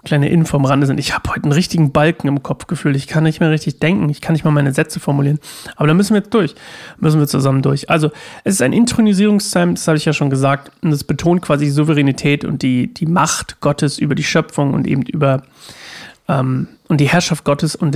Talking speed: 235 wpm